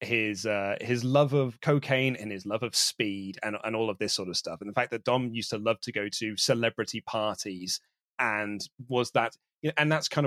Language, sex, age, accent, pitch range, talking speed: English, male, 30-49, British, 110-135 Hz, 220 wpm